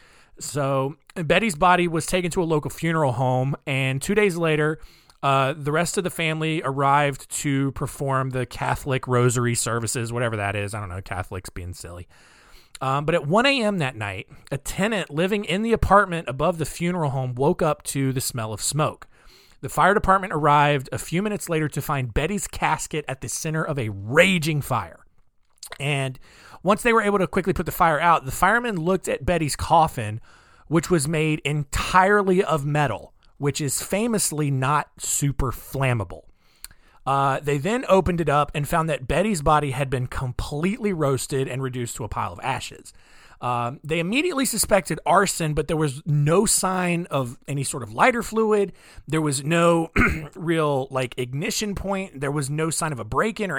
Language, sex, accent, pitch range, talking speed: English, male, American, 130-175 Hz, 180 wpm